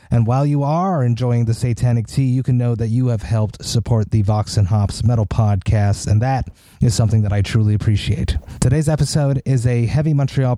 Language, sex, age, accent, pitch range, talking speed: English, male, 30-49, American, 110-140 Hz, 200 wpm